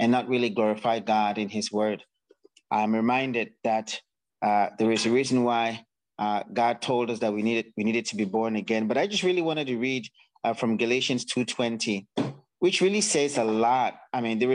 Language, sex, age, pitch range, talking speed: English, male, 30-49, 120-160 Hz, 200 wpm